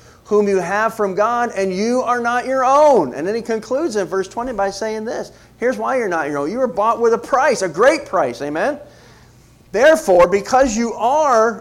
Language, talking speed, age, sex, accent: English, 210 wpm, 40-59, male, American